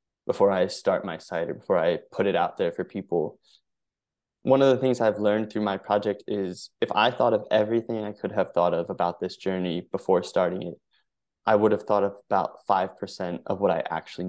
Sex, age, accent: male, 20-39, American